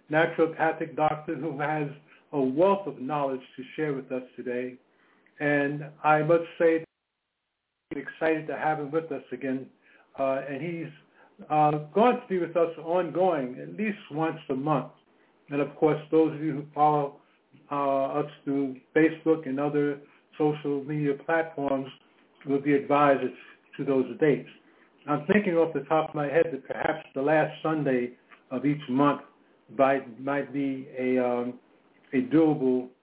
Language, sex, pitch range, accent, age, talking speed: English, male, 140-160 Hz, American, 60-79, 155 wpm